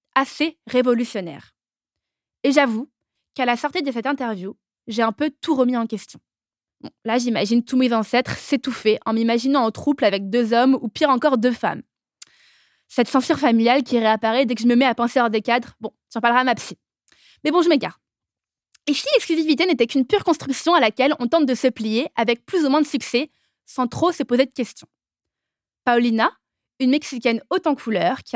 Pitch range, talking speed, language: 230-290 Hz, 200 wpm, French